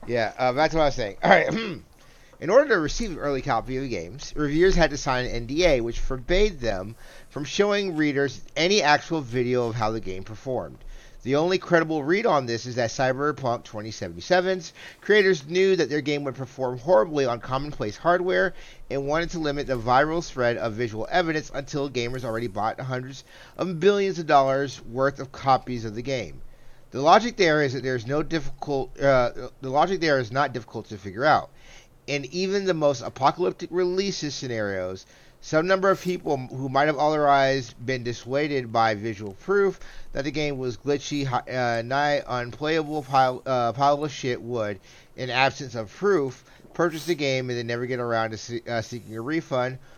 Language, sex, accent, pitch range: English, male, American, 120-155 Hz